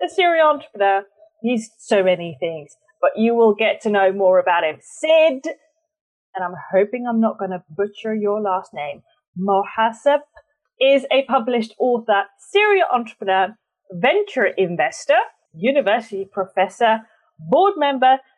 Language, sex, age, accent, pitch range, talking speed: English, female, 30-49, British, 195-300 Hz, 135 wpm